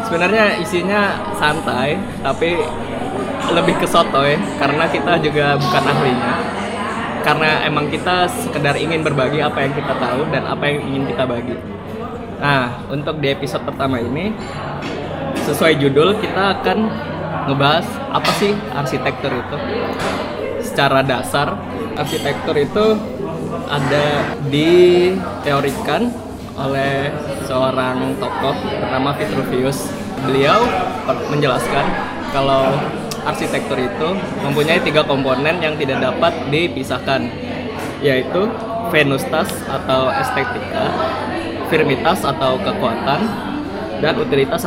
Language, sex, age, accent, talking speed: Indonesian, male, 20-39, native, 100 wpm